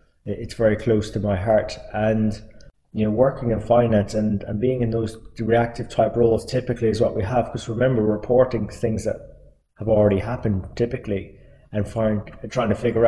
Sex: male